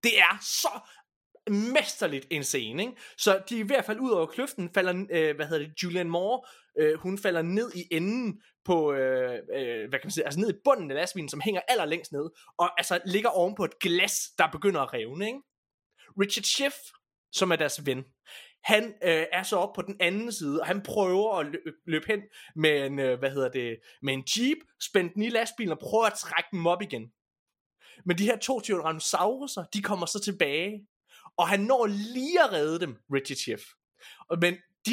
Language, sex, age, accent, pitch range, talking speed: Danish, male, 20-39, native, 170-225 Hz, 200 wpm